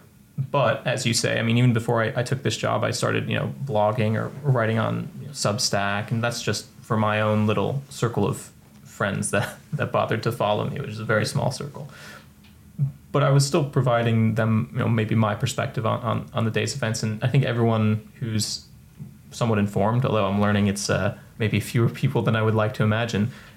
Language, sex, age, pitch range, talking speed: English, male, 20-39, 105-125 Hz, 215 wpm